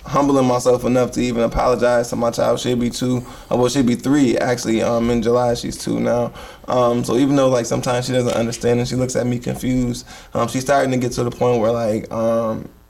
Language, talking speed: English, 240 wpm